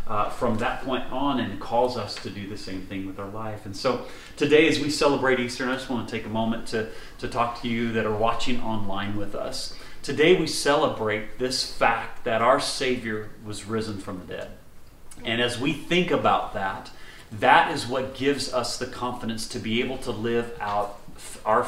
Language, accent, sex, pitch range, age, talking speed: English, American, male, 115-130 Hz, 30-49, 205 wpm